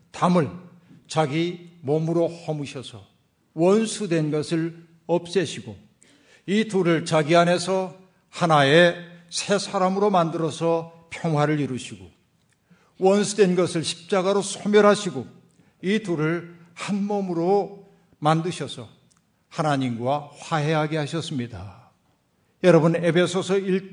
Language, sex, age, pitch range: Korean, male, 60-79, 150-180 Hz